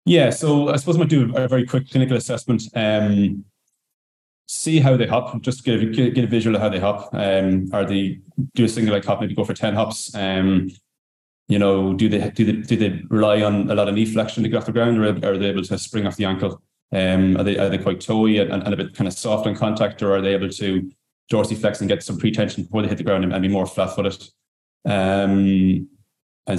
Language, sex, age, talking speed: English, male, 20-39, 245 wpm